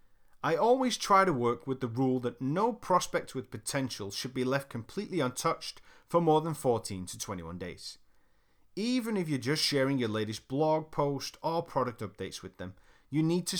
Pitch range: 105-165 Hz